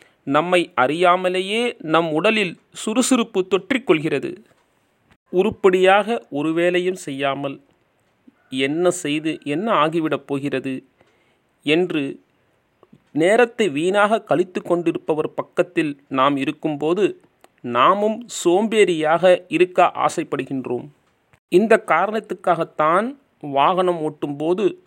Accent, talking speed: native, 70 wpm